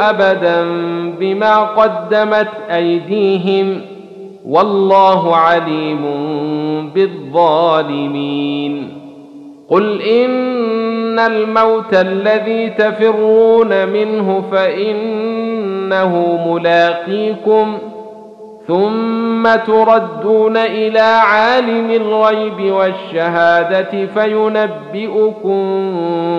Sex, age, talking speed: male, 50-69, 50 wpm